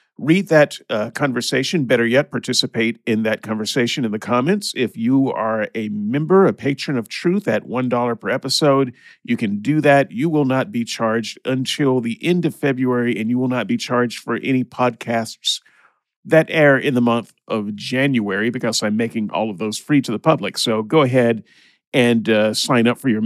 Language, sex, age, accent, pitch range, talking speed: English, male, 50-69, American, 115-140 Hz, 195 wpm